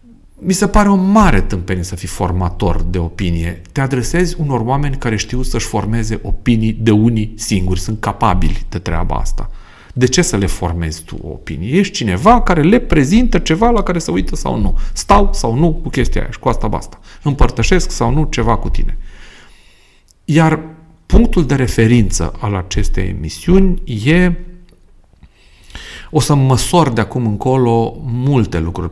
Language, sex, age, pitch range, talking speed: Romanian, male, 40-59, 90-140 Hz, 165 wpm